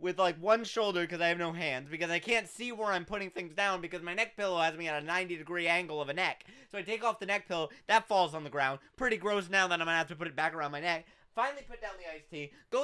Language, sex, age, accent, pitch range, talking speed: English, male, 30-49, American, 190-285 Hz, 310 wpm